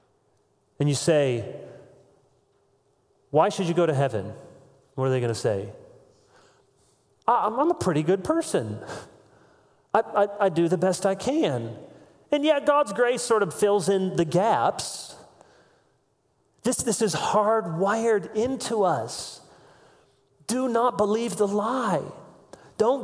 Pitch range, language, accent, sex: 135-205 Hz, English, American, male